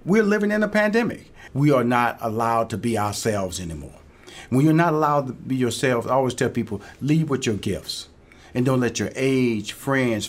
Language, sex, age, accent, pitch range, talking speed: English, male, 50-69, American, 115-155 Hz, 200 wpm